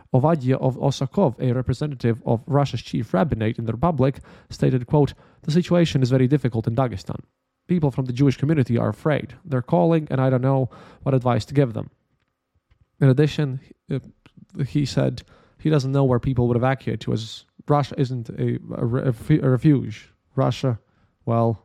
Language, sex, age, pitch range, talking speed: English, male, 20-39, 115-145 Hz, 160 wpm